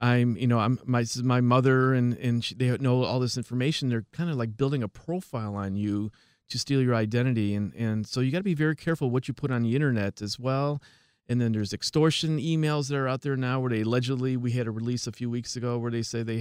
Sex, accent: male, American